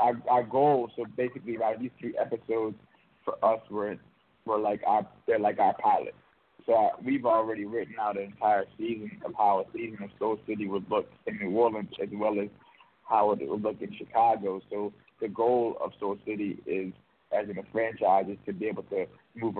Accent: American